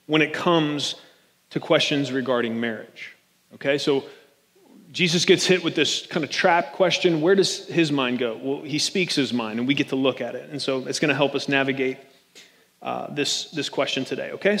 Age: 30-49